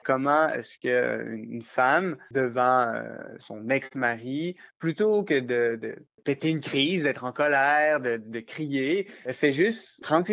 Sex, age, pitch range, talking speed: male, 20-39, 130-155 Hz, 150 wpm